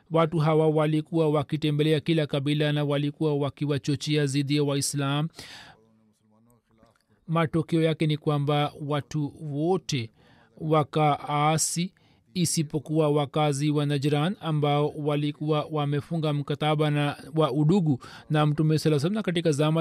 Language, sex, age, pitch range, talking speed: Swahili, male, 40-59, 150-165 Hz, 120 wpm